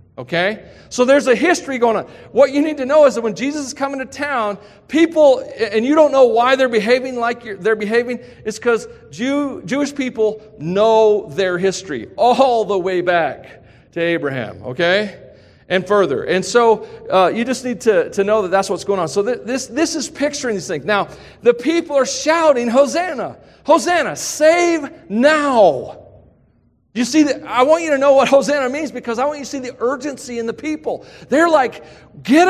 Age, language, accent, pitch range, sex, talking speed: 40-59, English, American, 215-295 Hz, male, 190 wpm